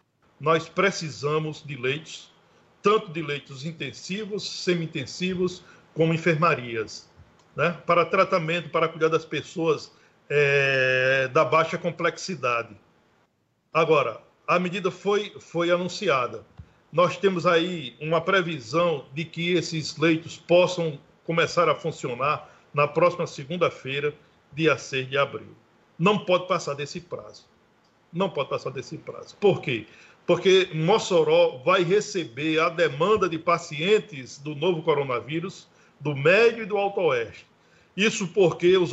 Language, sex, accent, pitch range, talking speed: Portuguese, male, Brazilian, 155-190 Hz, 120 wpm